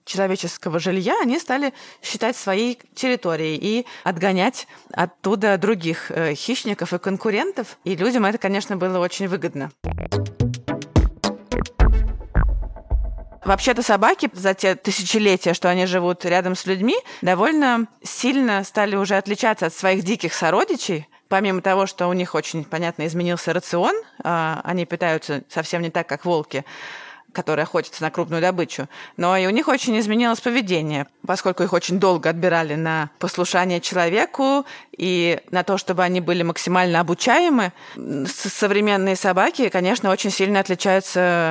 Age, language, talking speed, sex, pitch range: 20-39, Russian, 130 wpm, female, 170-205 Hz